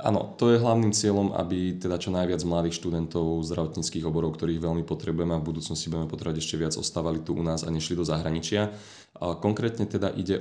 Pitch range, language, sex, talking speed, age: 80-85 Hz, Slovak, male, 195 wpm, 20-39